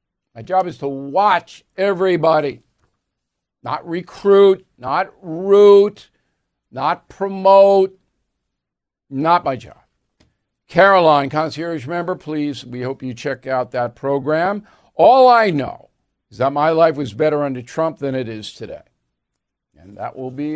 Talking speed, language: 130 wpm, English